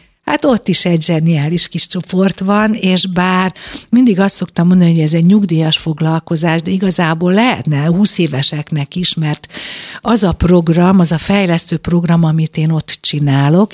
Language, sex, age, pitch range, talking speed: Hungarian, female, 60-79, 155-195 Hz, 160 wpm